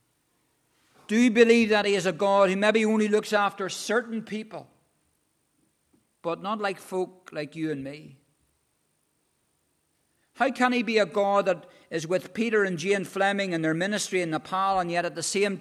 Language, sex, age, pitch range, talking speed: English, male, 50-69, 170-210 Hz, 175 wpm